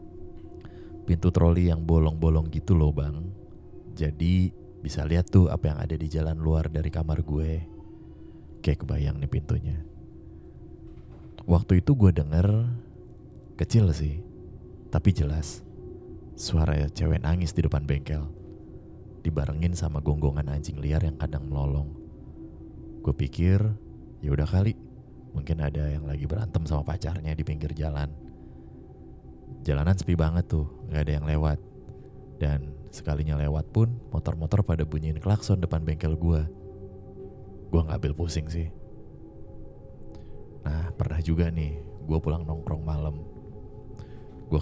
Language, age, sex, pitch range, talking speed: Indonesian, 20-39, male, 75-90 Hz, 125 wpm